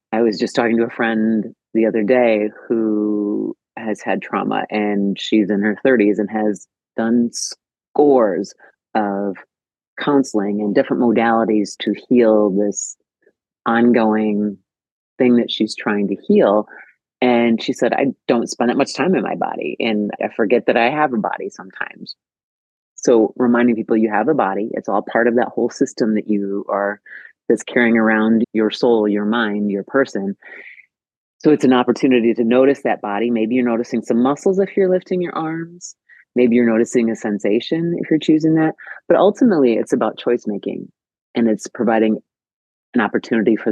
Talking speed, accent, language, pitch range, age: 170 wpm, American, English, 105-125 Hz, 30-49